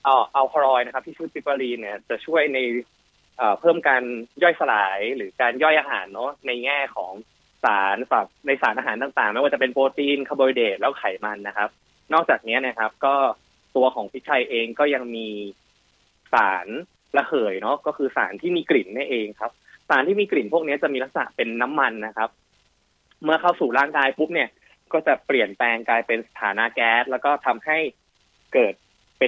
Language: English